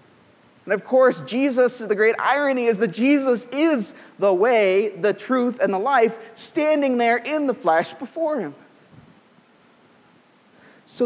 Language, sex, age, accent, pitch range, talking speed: English, male, 40-59, American, 185-255 Hz, 140 wpm